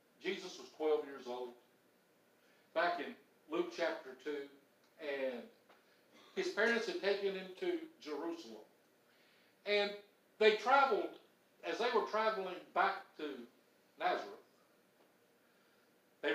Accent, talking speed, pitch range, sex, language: American, 105 wpm, 165-235 Hz, male, English